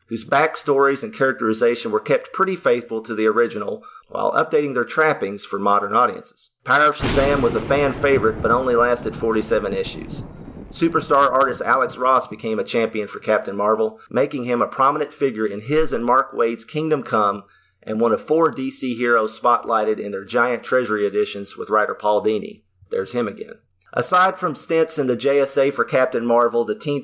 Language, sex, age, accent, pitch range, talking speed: English, male, 40-59, American, 110-145 Hz, 180 wpm